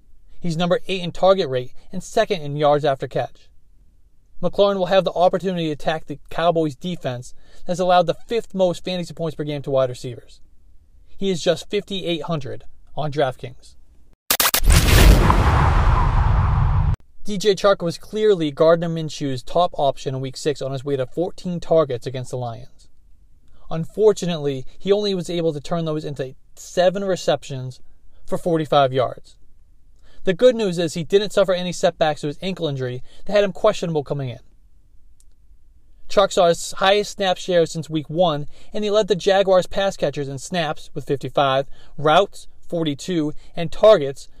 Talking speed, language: 160 wpm, English